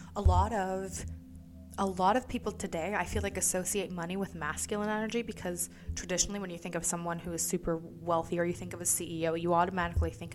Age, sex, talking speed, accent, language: 20-39, female, 210 wpm, American, English